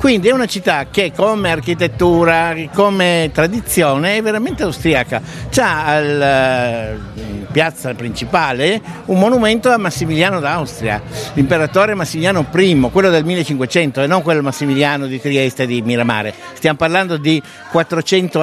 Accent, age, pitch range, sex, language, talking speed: native, 60-79, 135-190 Hz, male, Italian, 130 wpm